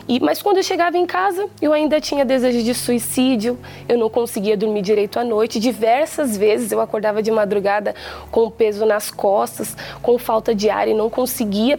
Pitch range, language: 225-315 Hz, Portuguese